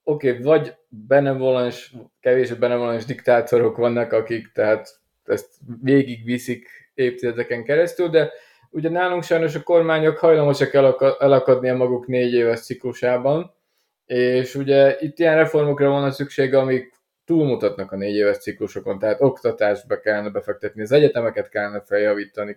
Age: 20-39